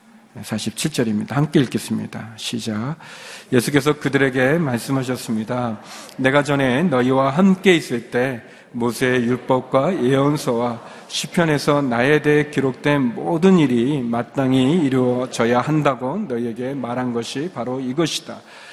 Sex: male